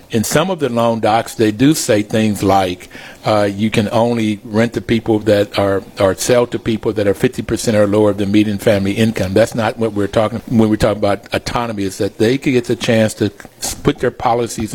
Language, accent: English, American